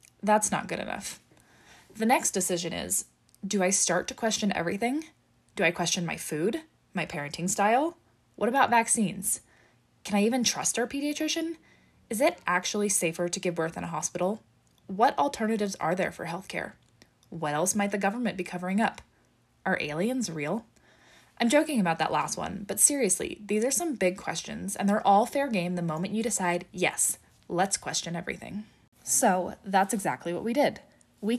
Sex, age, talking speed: female, 20-39, 175 wpm